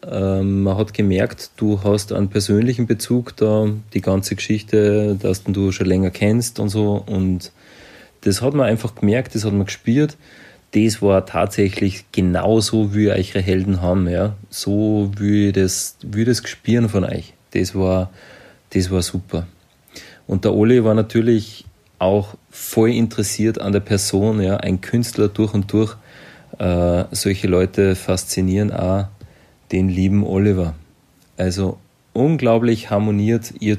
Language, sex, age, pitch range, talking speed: German, male, 30-49, 95-115 Hz, 145 wpm